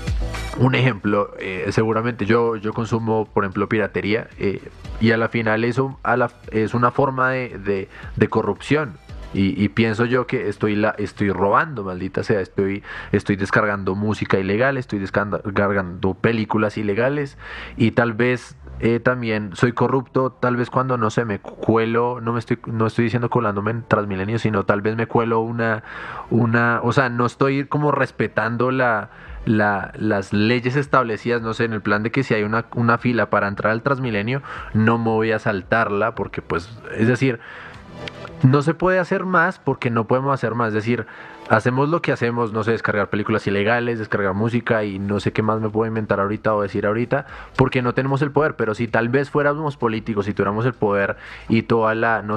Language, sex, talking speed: Spanish, male, 190 wpm